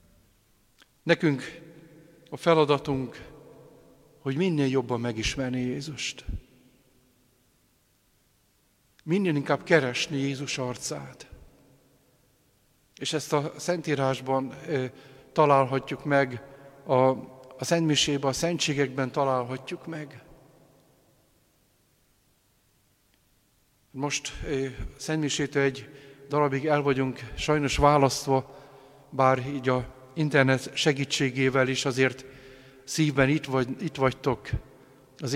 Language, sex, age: Hungarian, male, 50-69